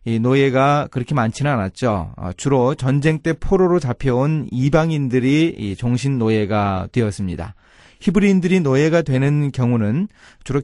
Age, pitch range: 30-49, 115-165 Hz